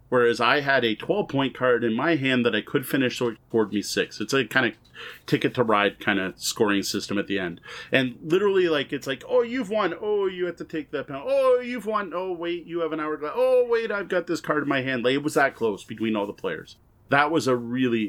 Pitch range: 115-150 Hz